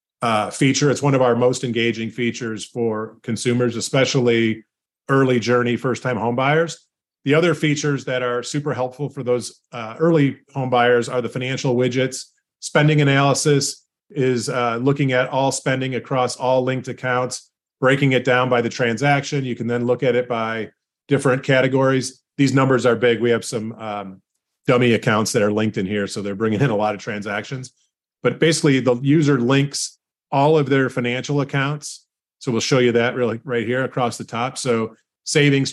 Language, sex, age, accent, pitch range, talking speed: English, male, 30-49, American, 120-135 Hz, 180 wpm